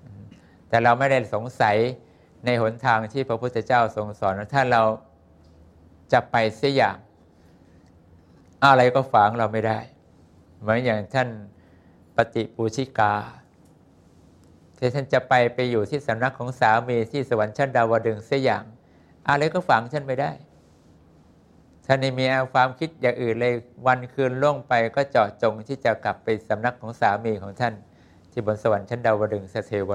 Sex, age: male, 60-79